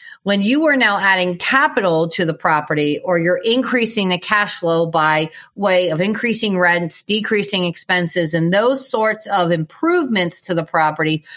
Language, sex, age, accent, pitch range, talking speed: English, female, 40-59, American, 170-220 Hz, 160 wpm